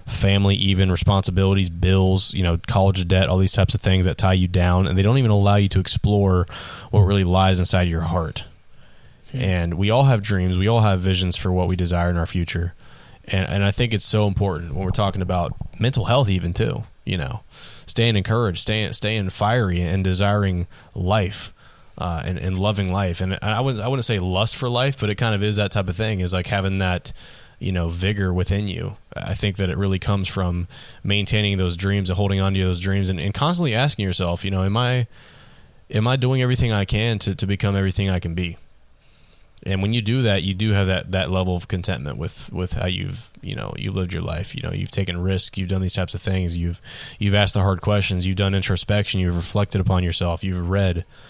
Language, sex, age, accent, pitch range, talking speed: English, male, 20-39, American, 90-105 Hz, 225 wpm